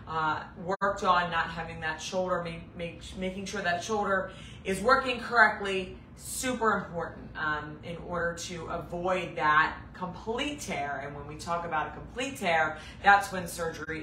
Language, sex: English, female